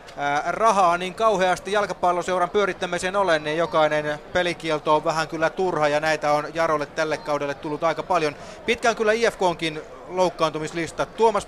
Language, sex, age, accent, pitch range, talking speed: Finnish, male, 30-49, native, 155-185 Hz, 140 wpm